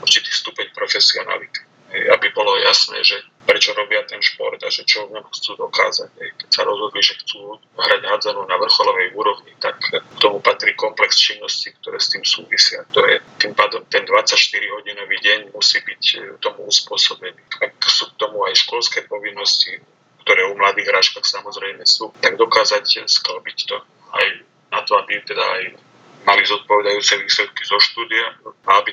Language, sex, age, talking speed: Slovak, male, 30-49, 160 wpm